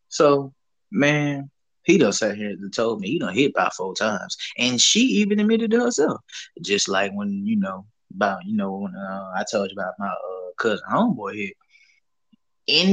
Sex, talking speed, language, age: male, 190 wpm, English, 20-39